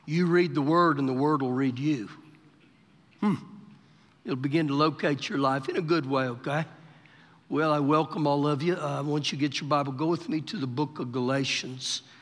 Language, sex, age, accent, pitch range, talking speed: English, male, 60-79, American, 140-170 Hz, 205 wpm